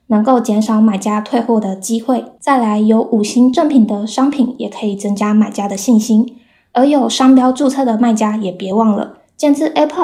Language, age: Chinese, 10-29